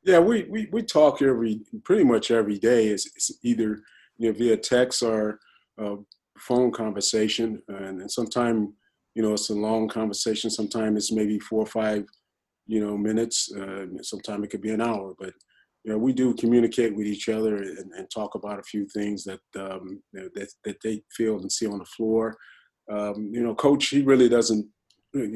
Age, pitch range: 30-49, 105-115 Hz